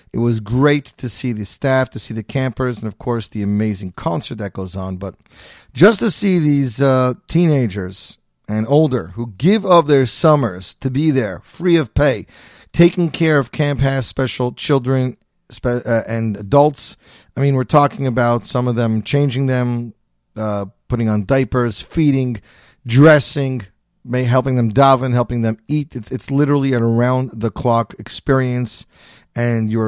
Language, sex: English, male